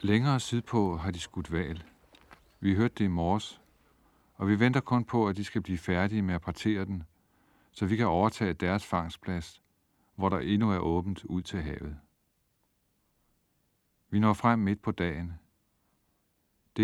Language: Danish